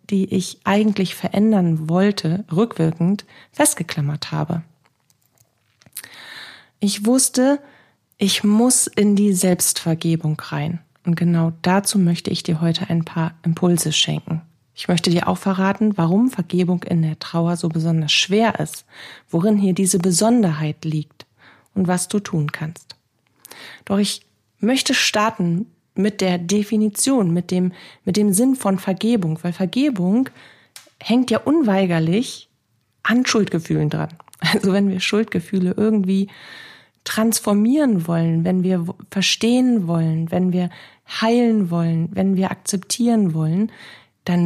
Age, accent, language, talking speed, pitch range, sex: 40-59, German, German, 125 wpm, 165-210 Hz, female